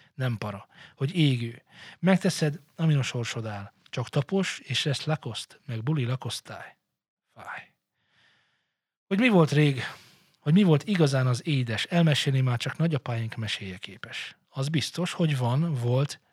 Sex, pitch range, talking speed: male, 120-155 Hz, 145 wpm